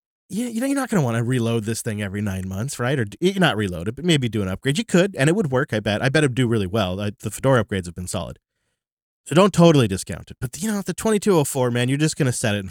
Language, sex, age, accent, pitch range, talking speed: English, male, 30-49, American, 105-145 Hz, 310 wpm